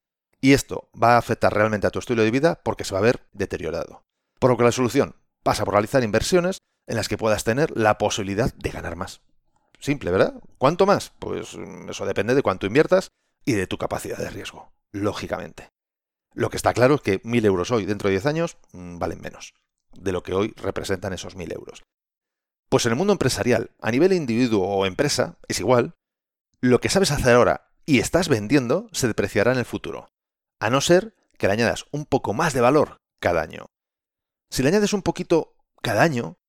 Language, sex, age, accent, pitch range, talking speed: Spanish, male, 40-59, Spanish, 110-170 Hz, 200 wpm